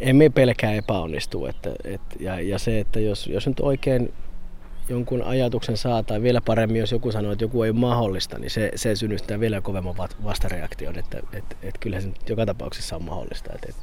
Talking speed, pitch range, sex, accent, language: 190 wpm, 95-110 Hz, male, native, Finnish